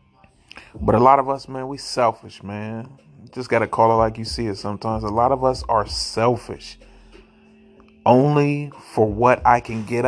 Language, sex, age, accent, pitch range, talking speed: English, male, 30-49, American, 100-125 Hz, 190 wpm